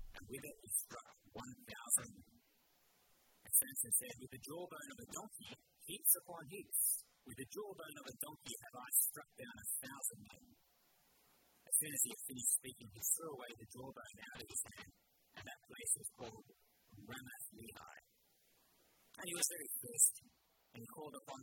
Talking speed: 175 wpm